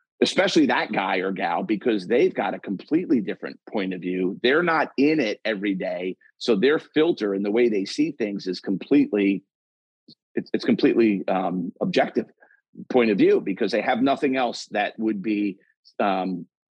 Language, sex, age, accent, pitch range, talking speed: English, male, 40-59, American, 100-125 Hz, 175 wpm